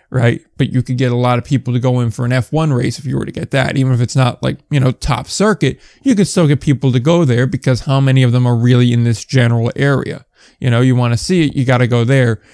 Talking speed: 295 wpm